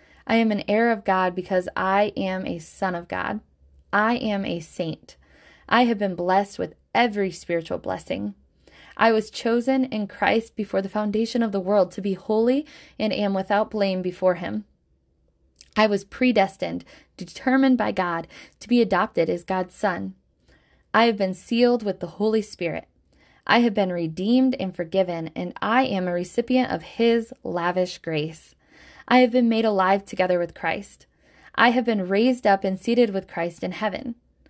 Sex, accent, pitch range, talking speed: female, American, 180-230 Hz, 170 wpm